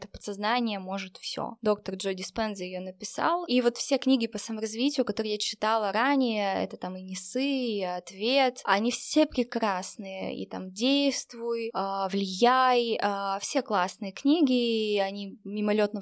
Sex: female